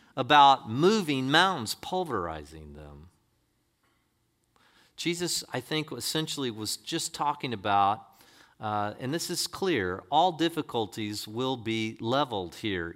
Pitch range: 110-155 Hz